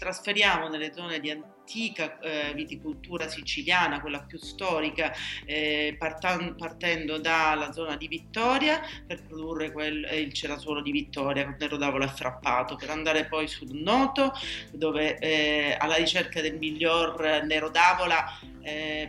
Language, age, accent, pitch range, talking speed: Italian, 40-59, native, 150-170 Hz, 135 wpm